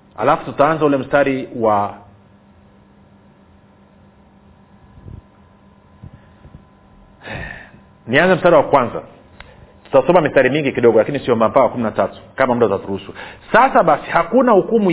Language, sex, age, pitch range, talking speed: Swahili, male, 40-59, 150-205 Hz, 90 wpm